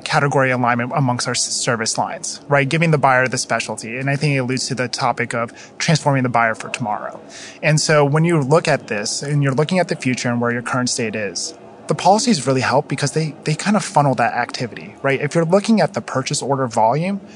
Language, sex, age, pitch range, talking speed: English, male, 20-39, 130-160 Hz, 230 wpm